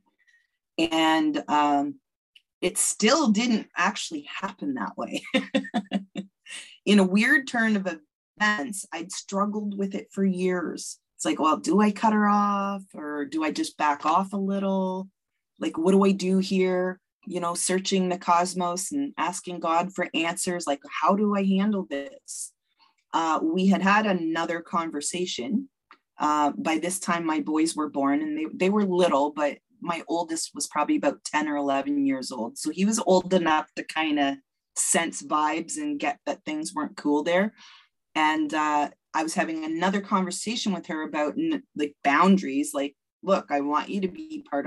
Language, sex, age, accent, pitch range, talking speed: English, female, 30-49, American, 150-205 Hz, 170 wpm